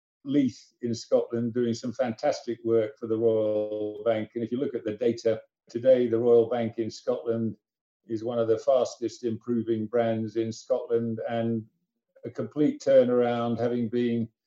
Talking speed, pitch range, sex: 160 wpm, 115-135 Hz, male